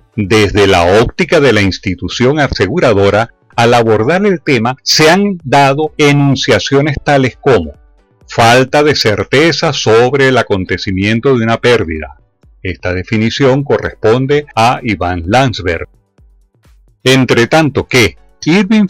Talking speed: 115 wpm